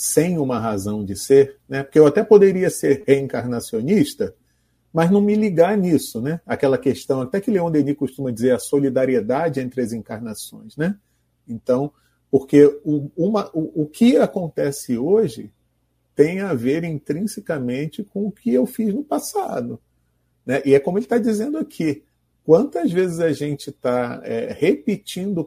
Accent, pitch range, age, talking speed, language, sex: Brazilian, 120-165 Hz, 40-59, 160 wpm, Portuguese, male